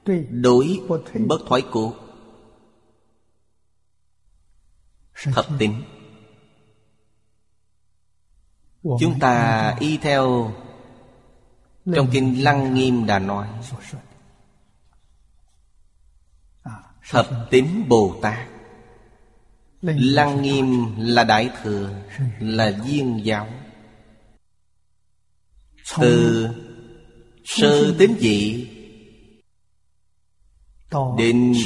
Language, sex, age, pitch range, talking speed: Vietnamese, male, 30-49, 105-130 Hz, 65 wpm